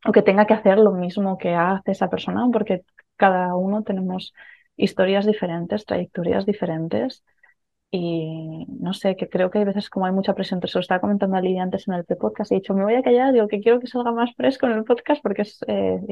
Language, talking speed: Spanish, 230 wpm